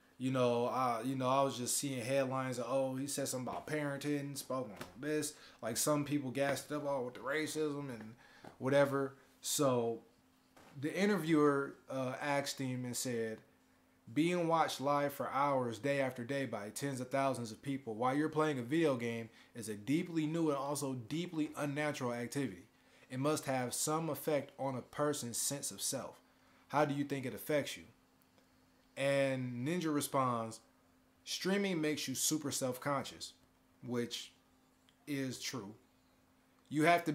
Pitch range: 120-145 Hz